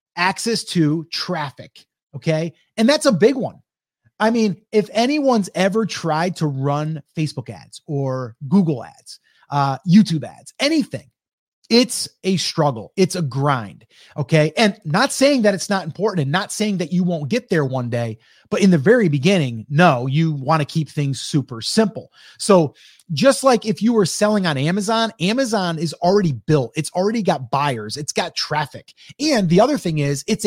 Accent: American